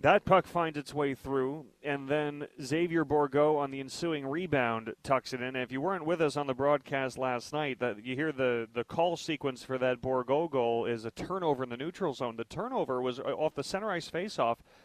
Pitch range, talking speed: 130-160 Hz, 215 wpm